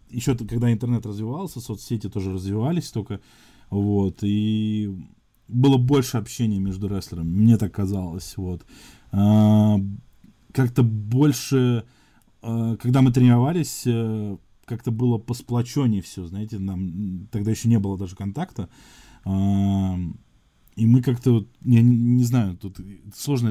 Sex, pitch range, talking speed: male, 95-120 Hz, 110 wpm